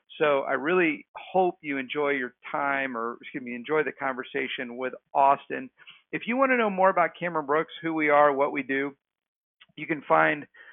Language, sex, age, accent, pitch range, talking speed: English, male, 50-69, American, 125-145 Hz, 190 wpm